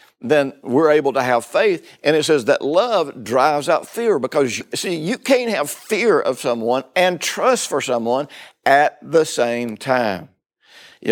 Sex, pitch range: male, 125-170 Hz